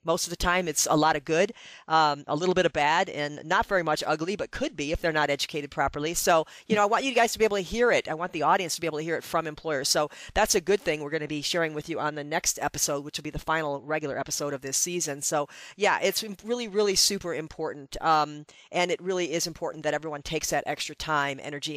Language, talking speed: English, 275 wpm